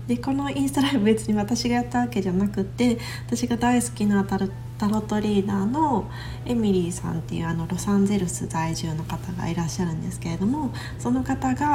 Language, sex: Japanese, female